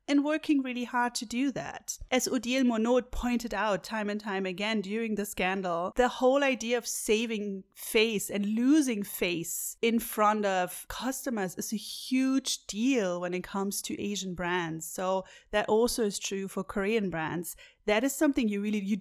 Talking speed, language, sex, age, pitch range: 175 wpm, English, female, 30-49, 185-240 Hz